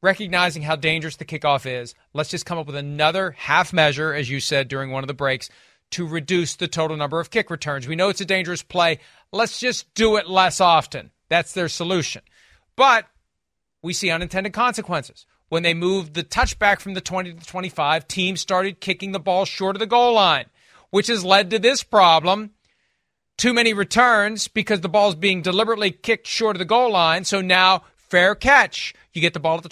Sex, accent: male, American